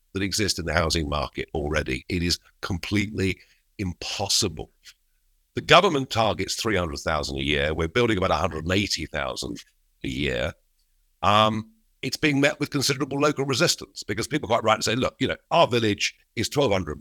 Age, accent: 50-69, British